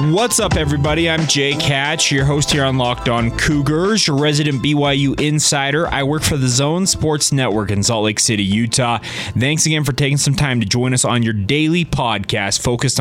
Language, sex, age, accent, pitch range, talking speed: English, male, 20-39, American, 120-150 Hz, 200 wpm